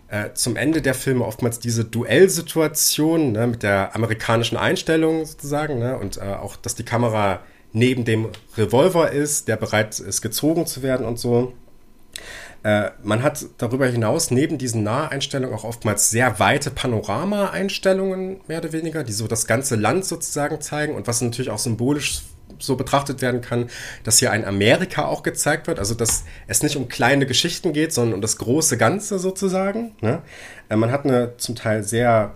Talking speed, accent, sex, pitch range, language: 170 wpm, German, male, 105-135 Hz, German